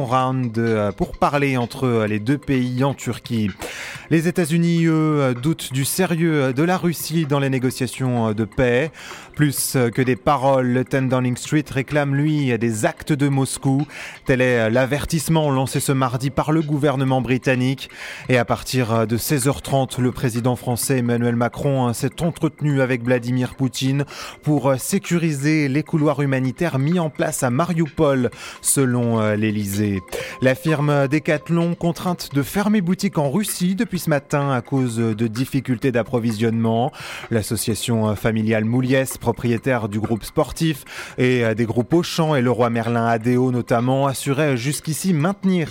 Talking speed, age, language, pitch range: 145 wpm, 20-39, English, 120-155 Hz